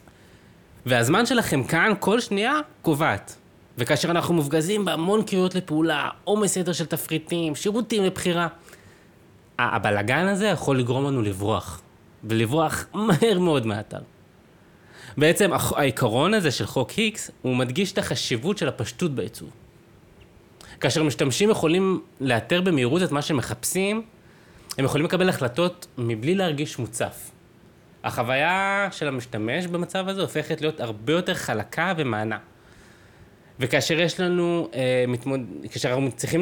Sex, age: male, 20-39